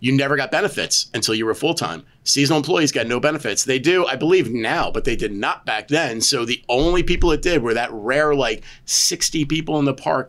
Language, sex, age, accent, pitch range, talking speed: English, male, 30-49, American, 125-165 Hz, 230 wpm